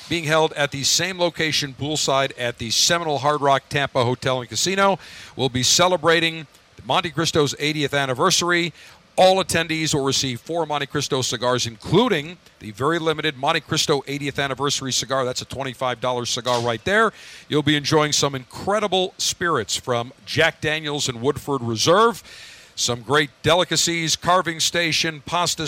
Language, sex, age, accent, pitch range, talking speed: English, male, 50-69, American, 130-160 Hz, 150 wpm